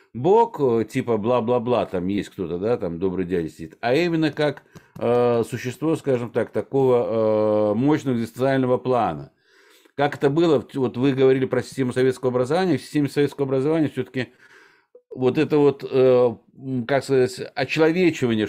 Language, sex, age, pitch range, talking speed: Russian, male, 60-79, 120-155 Hz, 145 wpm